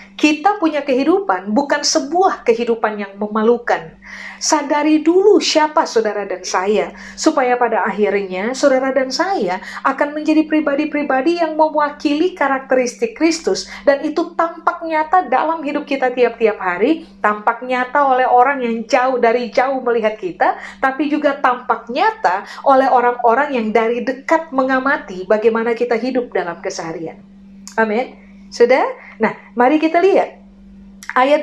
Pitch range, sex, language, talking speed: 220-305 Hz, female, Indonesian, 130 wpm